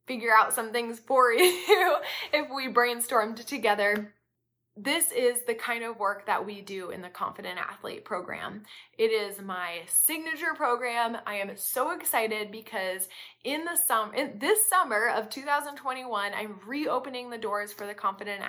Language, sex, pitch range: English, female, 205-255 Hz